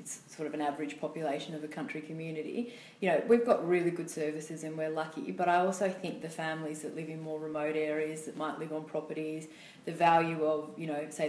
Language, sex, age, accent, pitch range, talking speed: English, female, 30-49, Australian, 155-180 Hz, 230 wpm